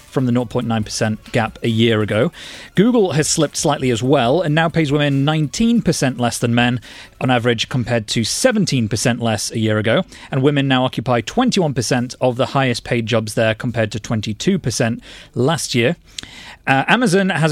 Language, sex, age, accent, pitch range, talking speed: English, male, 30-49, British, 115-150 Hz, 170 wpm